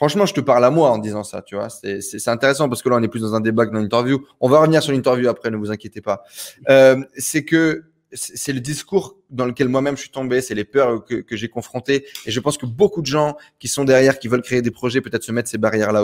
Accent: French